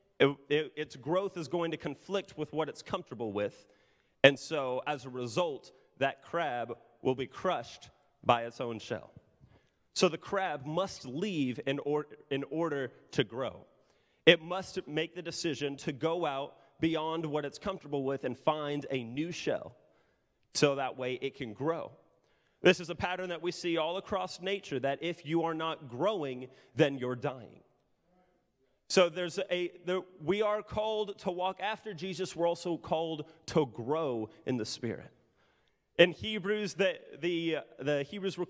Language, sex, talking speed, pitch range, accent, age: English, male, 160 wpm, 140-180 Hz, American, 30-49